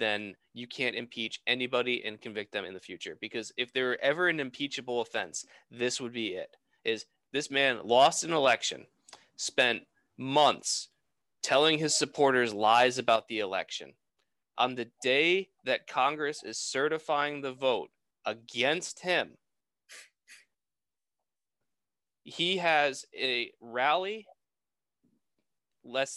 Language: English